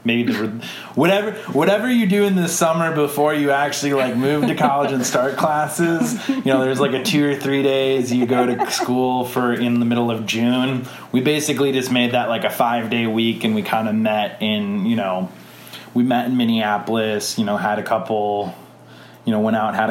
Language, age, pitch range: English, 20-39, 110-135 Hz